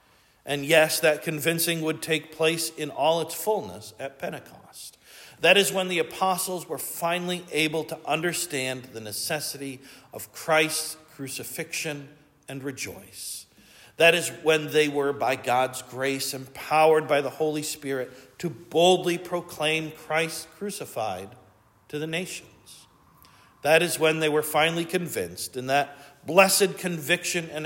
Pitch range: 135-165 Hz